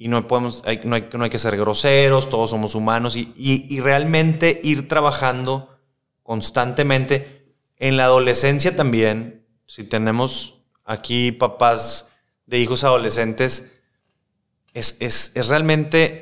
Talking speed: 130 wpm